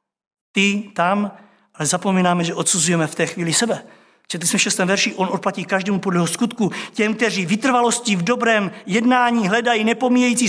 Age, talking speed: 50-69, 160 wpm